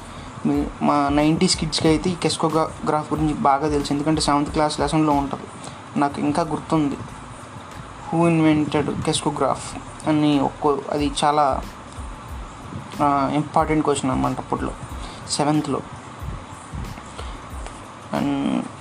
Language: Telugu